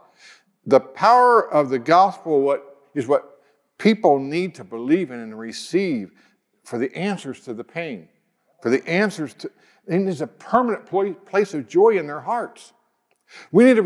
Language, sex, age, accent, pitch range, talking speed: English, male, 60-79, American, 140-205 Hz, 160 wpm